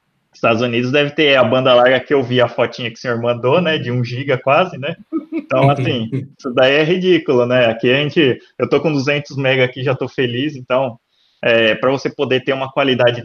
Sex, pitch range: male, 115-130 Hz